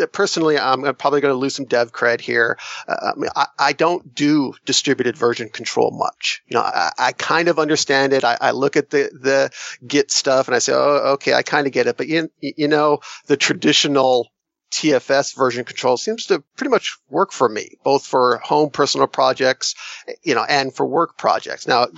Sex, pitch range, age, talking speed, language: male, 125-150 Hz, 40-59, 205 wpm, English